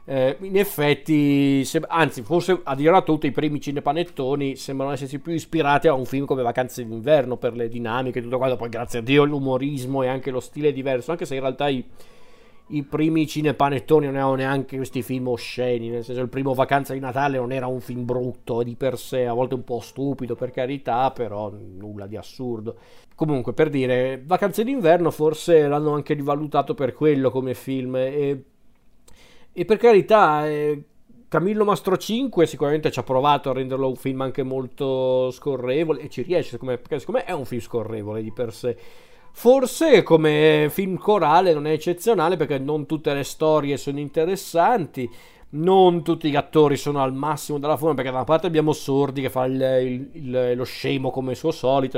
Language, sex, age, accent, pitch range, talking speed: Italian, male, 40-59, native, 130-155 Hz, 195 wpm